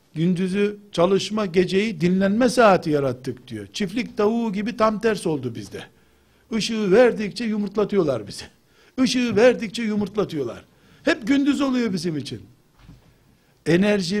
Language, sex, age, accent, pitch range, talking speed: Turkish, male, 60-79, native, 175-225 Hz, 115 wpm